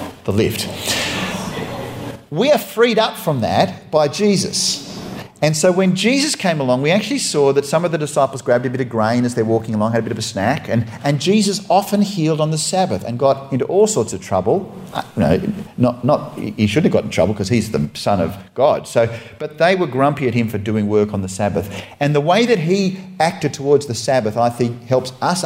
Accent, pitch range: Australian, 115-155 Hz